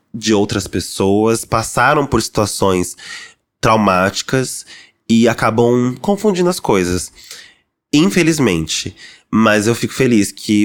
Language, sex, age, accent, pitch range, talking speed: Portuguese, male, 20-39, Brazilian, 105-170 Hz, 100 wpm